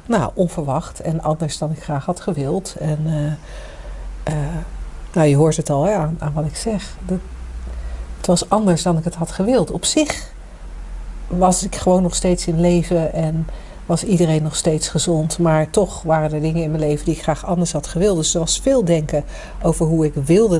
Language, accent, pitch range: Dutch, Dutch, 155-185 Hz